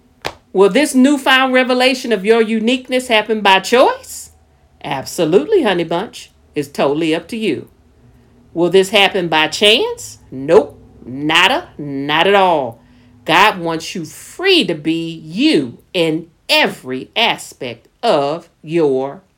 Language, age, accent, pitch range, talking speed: English, 50-69, American, 165-270 Hz, 120 wpm